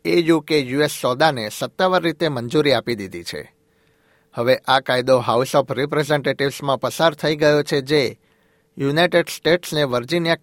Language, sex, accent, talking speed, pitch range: Gujarati, male, native, 140 wpm, 135-155 Hz